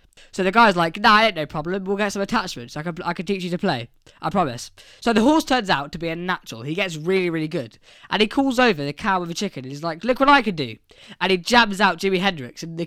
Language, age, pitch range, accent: English, 20-39, 155-220 Hz, British